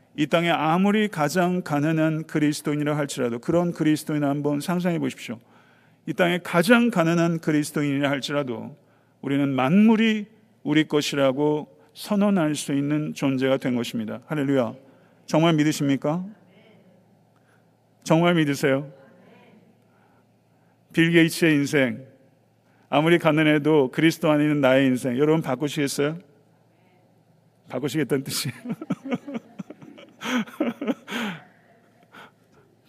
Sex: male